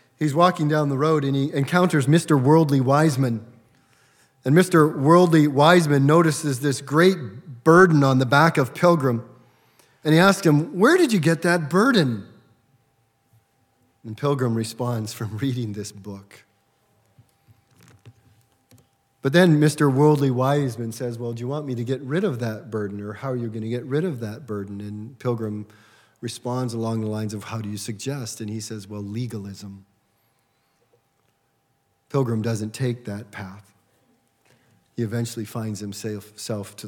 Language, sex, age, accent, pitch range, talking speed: English, male, 40-59, American, 110-140 Hz, 155 wpm